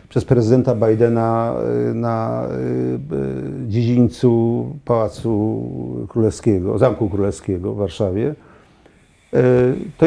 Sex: male